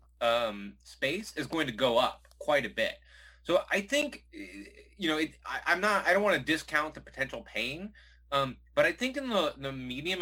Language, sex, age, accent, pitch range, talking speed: English, male, 30-49, American, 110-150 Hz, 205 wpm